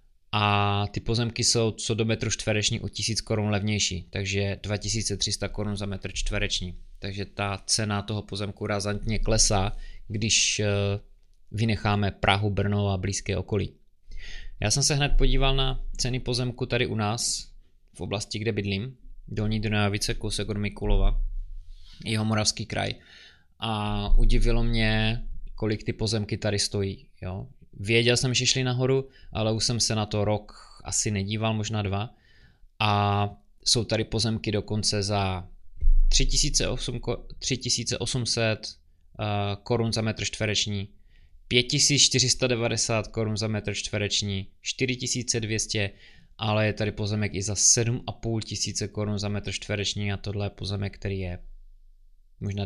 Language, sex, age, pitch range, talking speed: Czech, male, 20-39, 100-115 Hz, 130 wpm